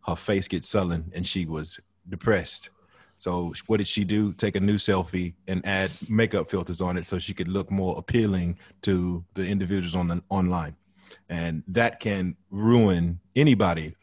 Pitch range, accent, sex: 85-100 Hz, American, male